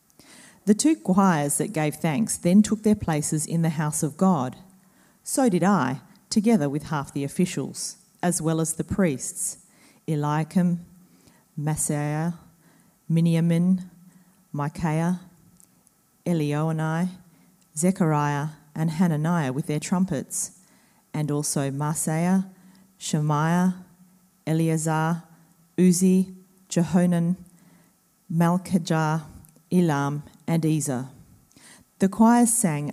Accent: Australian